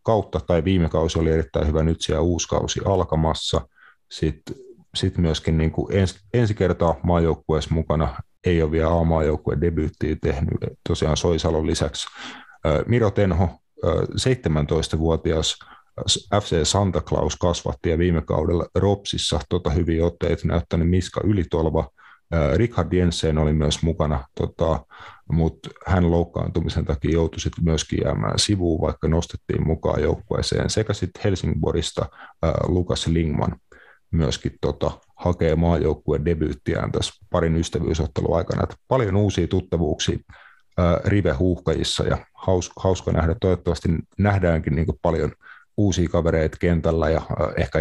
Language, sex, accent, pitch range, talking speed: Finnish, male, native, 80-90 Hz, 125 wpm